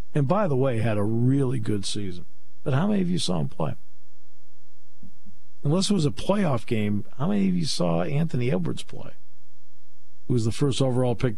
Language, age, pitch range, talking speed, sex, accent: English, 50-69, 115-165 Hz, 195 wpm, male, American